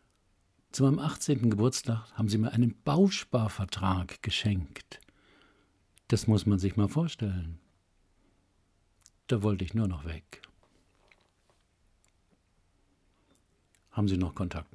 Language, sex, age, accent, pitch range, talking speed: German, male, 60-79, German, 95-120 Hz, 105 wpm